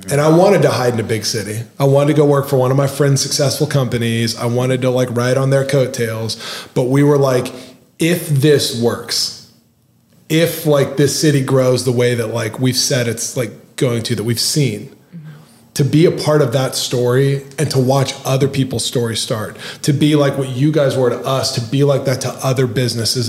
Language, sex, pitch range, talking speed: English, male, 125-145 Hz, 215 wpm